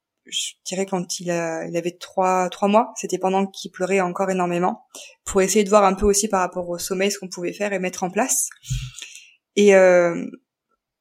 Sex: female